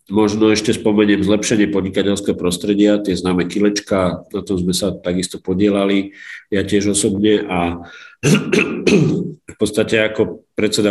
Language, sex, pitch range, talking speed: Slovak, male, 95-110 Hz, 125 wpm